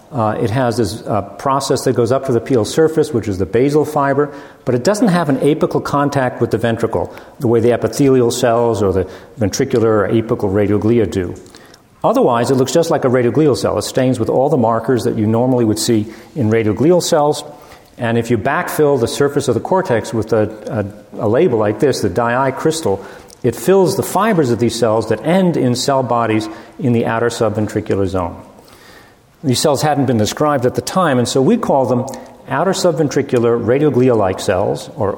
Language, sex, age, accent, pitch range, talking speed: English, male, 40-59, American, 115-140 Hz, 205 wpm